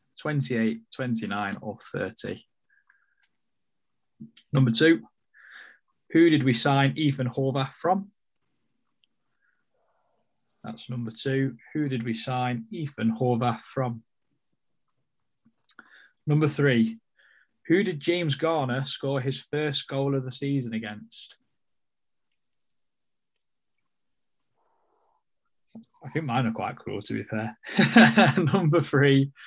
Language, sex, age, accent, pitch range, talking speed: English, male, 10-29, British, 115-140 Hz, 100 wpm